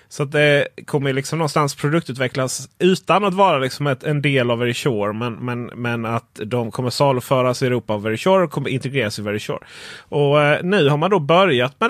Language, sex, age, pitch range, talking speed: Swedish, male, 30-49, 125-185 Hz, 215 wpm